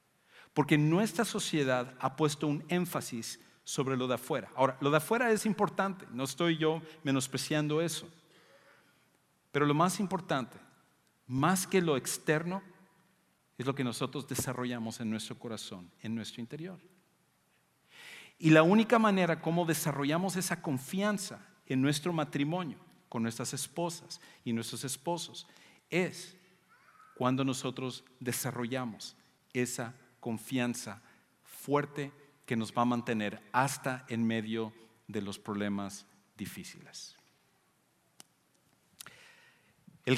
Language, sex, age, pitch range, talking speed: English, male, 50-69, 120-170 Hz, 120 wpm